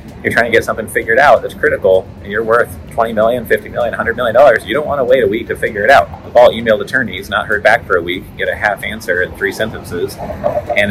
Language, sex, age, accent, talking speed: English, male, 30-49, American, 265 wpm